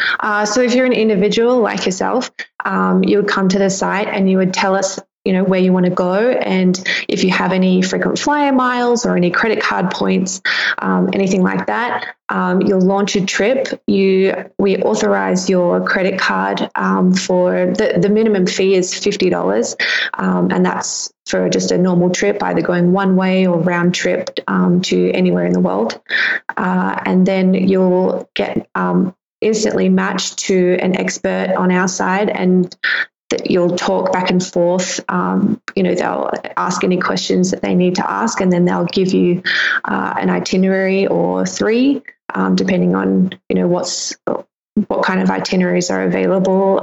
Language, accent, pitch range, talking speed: English, Australian, 175-195 Hz, 180 wpm